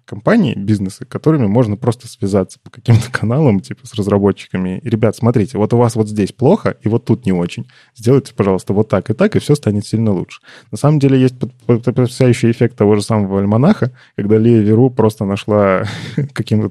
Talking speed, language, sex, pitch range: 185 wpm, Russian, male, 105-130 Hz